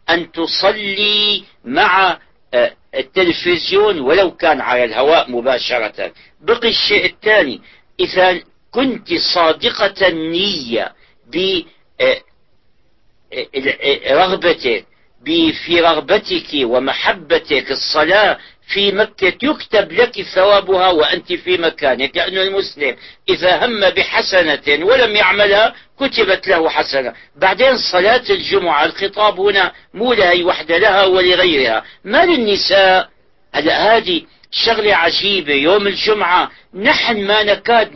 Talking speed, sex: 95 wpm, male